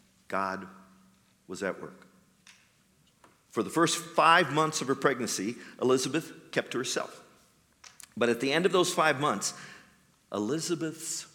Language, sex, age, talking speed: English, male, 50-69, 130 wpm